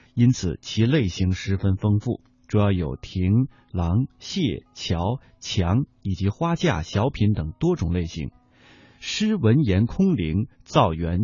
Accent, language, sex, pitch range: native, Chinese, male, 95-135 Hz